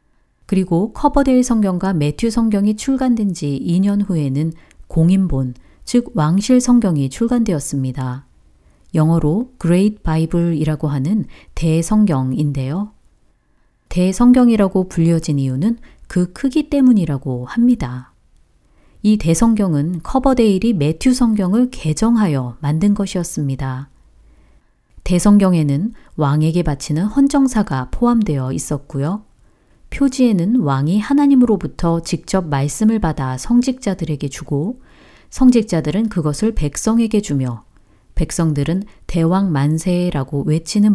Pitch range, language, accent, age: 145-215 Hz, Korean, native, 40-59